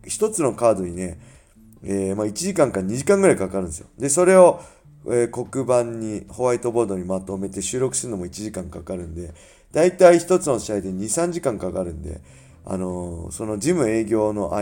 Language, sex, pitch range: Japanese, male, 90-115 Hz